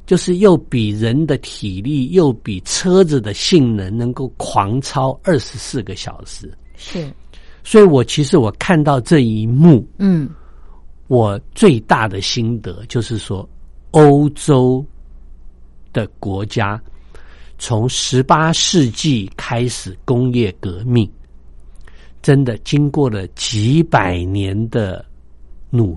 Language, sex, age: Chinese, male, 50-69